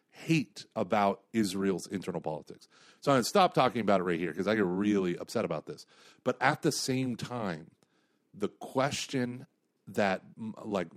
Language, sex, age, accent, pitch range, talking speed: English, male, 40-59, American, 100-130 Hz, 170 wpm